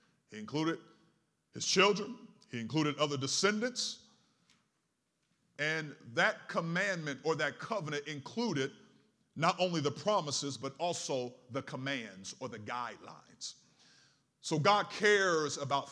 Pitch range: 135-170 Hz